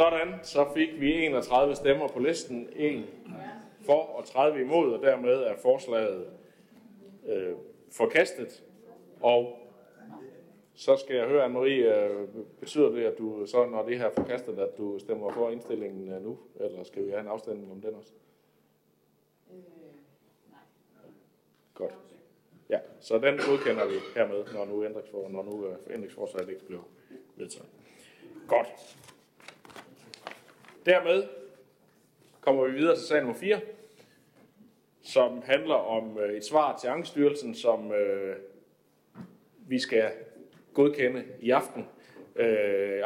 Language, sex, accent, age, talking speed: Danish, male, native, 60-79, 125 wpm